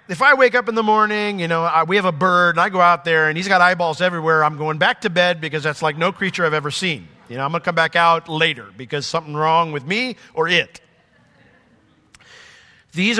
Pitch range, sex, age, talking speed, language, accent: 140-190 Hz, male, 40-59, 240 wpm, English, American